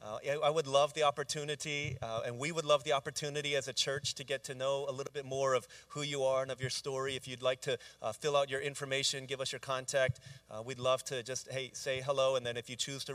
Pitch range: 120-140 Hz